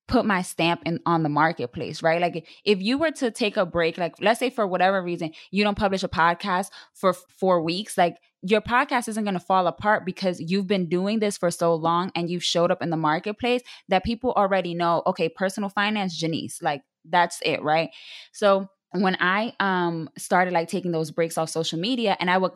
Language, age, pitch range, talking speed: English, 20-39, 170-200 Hz, 215 wpm